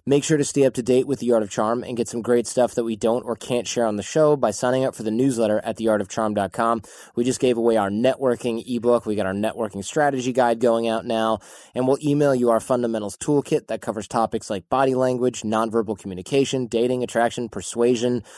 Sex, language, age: male, English, 20-39